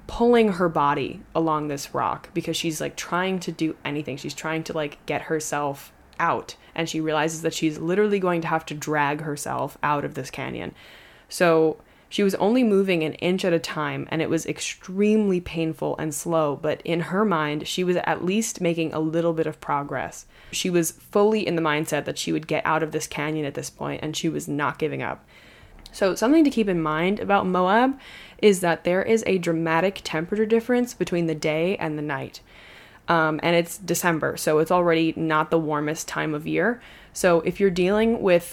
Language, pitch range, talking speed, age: English, 155-180 Hz, 200 wpm, 20-39